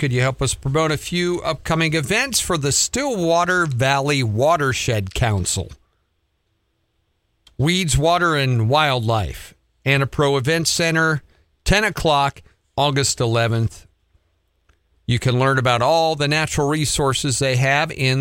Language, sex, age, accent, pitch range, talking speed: English, male, 50-69, American, 95-135 Hz, 120 wpm